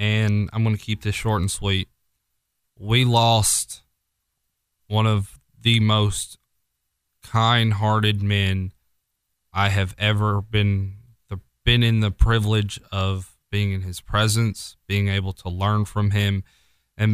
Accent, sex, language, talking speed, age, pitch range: American, male, English, 135 wpm, 20-39, 100-115 Hz